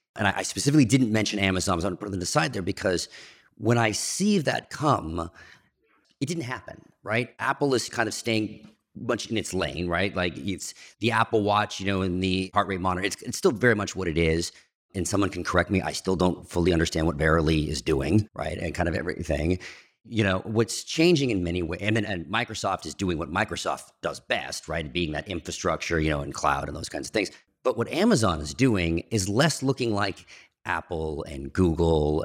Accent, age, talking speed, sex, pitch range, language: American, 40-59, 210 wpm, male, 85-110 Hz, English